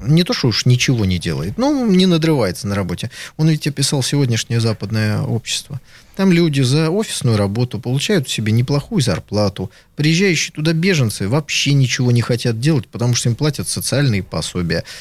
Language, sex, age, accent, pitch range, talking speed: Russian, male, 20-39, native, 105-145 Hz, 170 wpm